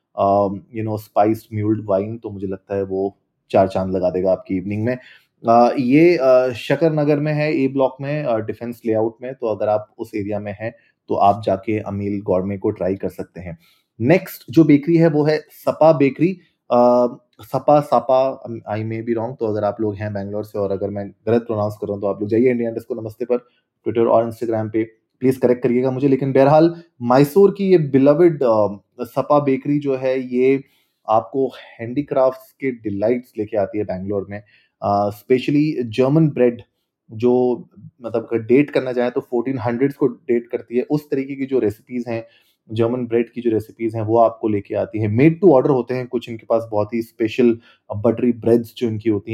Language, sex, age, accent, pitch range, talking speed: Hindi, male, 30-49, native, 110-135 Hz, 165 wpm